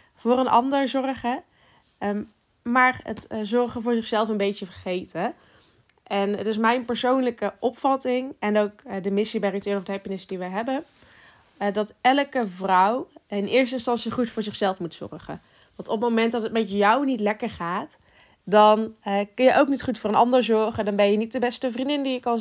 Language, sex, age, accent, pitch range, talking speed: Dutch, female, 20-39, Dutch, 205-245 Hz, 195 wpm